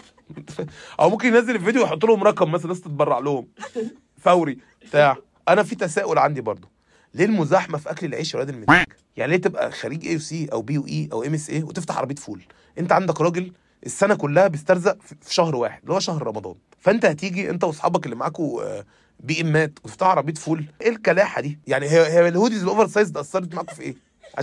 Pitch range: 155-205 Hz